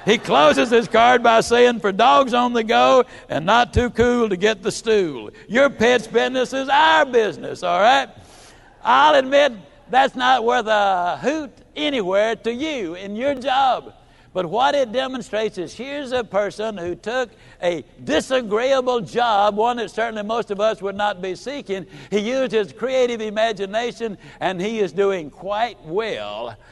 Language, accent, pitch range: English, American, 165-235 Hz